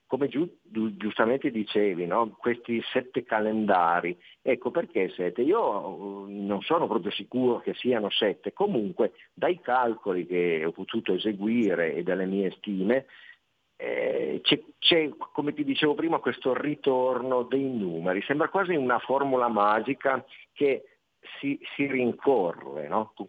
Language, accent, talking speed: Italian, native, 125 wpm